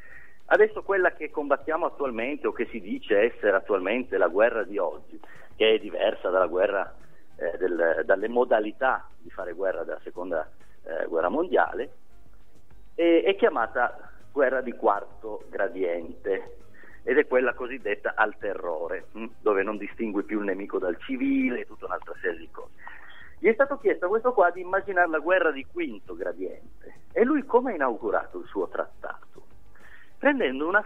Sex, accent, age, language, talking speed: male, native, 40-59, Italian, 165 wpm